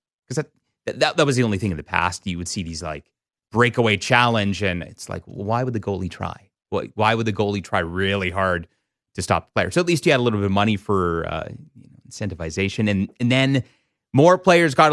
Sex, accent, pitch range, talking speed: male, American, 95-130 Hz, 235 wpm